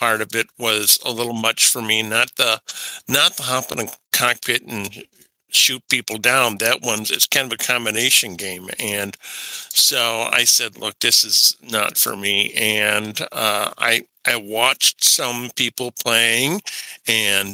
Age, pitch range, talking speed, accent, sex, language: 50-69, 105-135 Hz, 165 wpm, American, male, English